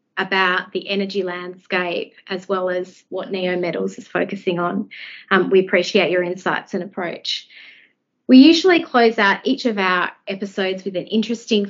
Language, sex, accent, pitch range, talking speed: English, female, Australian, 190-245 Hz, 160 wpm